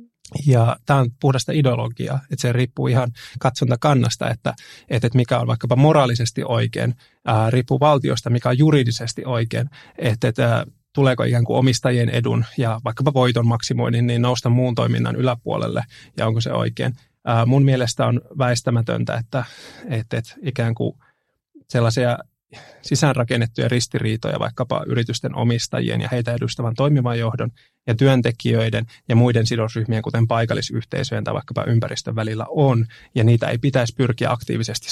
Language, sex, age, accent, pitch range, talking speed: Finnish, male, 30-49, native, 115-135 Hz, 135 wpm